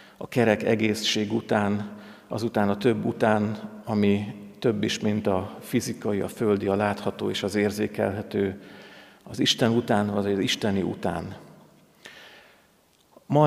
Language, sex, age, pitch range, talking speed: Hungarian, male, 50-69, 105-120 Hz, 130 wpm